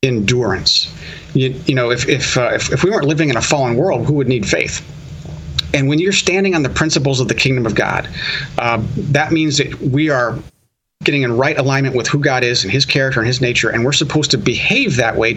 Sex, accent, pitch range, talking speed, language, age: male, American, 120-155 Hz, 230 wpm, English, 40-59